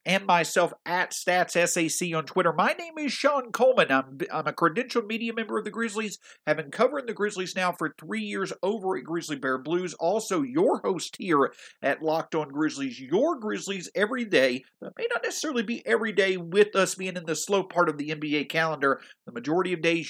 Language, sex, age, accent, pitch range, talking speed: English, male, 50-69, American, 150-225 Hz, 205 wpm